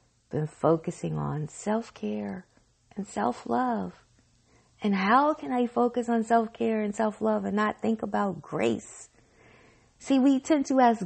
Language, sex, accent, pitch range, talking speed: English, female, American, 180-240 Hz, 135 wpm